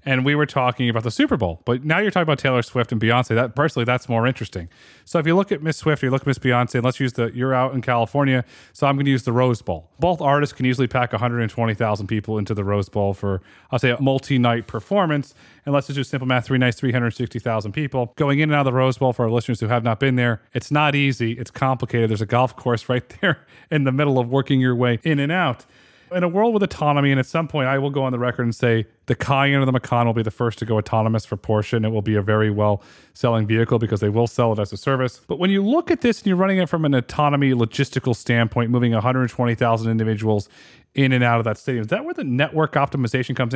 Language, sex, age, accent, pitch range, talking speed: English, male, 30-49, American, 115-150 Hz, 265 wpm